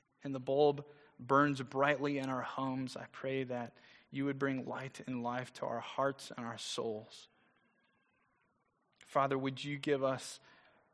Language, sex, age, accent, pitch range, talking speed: English, male, 30-49, American, 130-165 Hz, 155 wpm